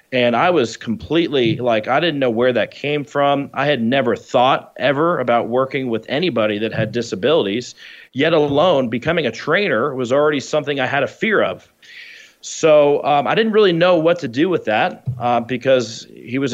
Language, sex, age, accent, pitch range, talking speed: English, male, 30-49, American, 120-145 Hz, 190 wpm